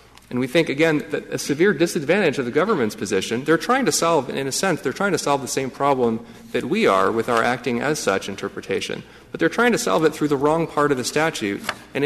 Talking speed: 245 wpm